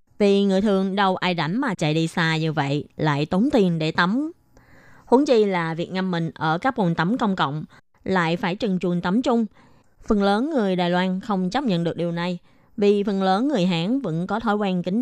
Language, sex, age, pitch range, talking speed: Vietnamese, female, 20-39, 170-210 Hz, 225 wpm